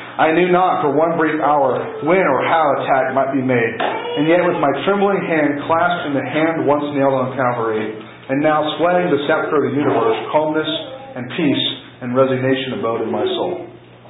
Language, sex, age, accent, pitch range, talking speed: English, male, 40-59, American, 130-165 Hz, 190 wpm